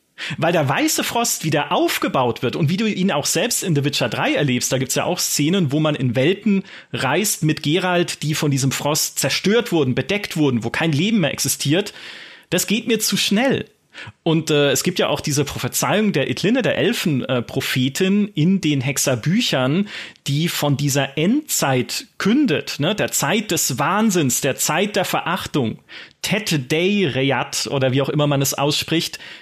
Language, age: German, 30-49